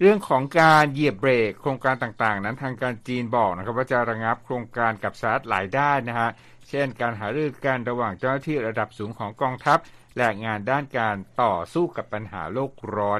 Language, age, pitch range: Thai, 60-79, 110-140 Hz